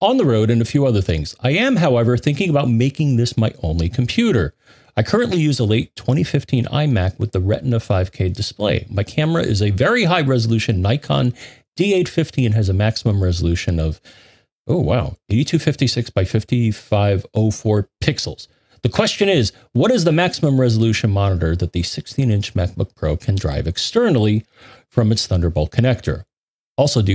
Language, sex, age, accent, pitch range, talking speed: English, male, 40-59, American, 105-140 Hz, 165 wpm